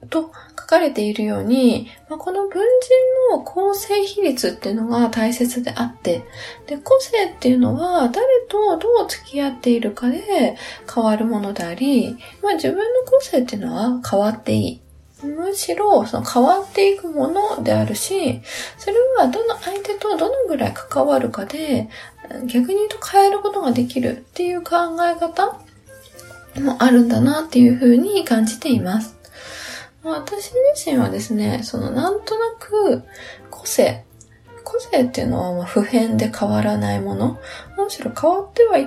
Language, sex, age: Japanese, female, 20-39